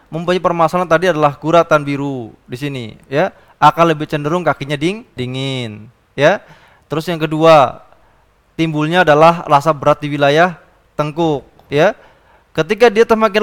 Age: 20-39